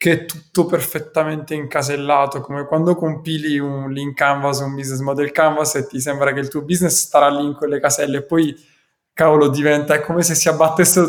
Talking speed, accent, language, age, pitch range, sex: 195 wpm, native, Italian, 20-39, 135-160 Hz, male